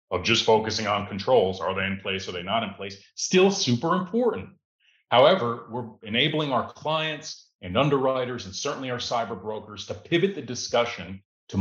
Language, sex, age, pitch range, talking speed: English, male, 40-59, 105-135 Hz, 175 wpm